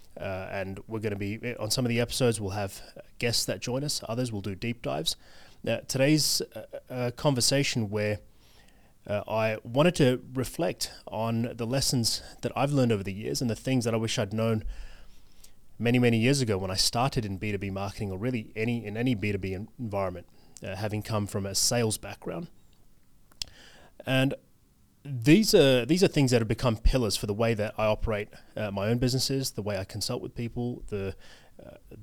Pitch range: 100-120 Hz